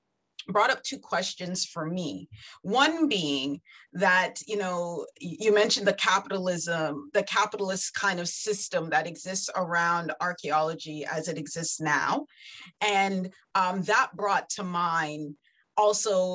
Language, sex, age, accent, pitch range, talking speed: English, female, 30-49, American, 175-220 Hz, 130 wpm